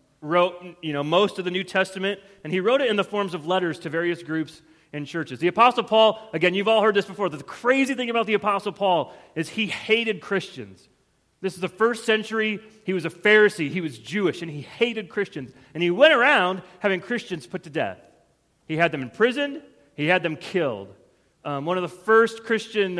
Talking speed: 210 wpm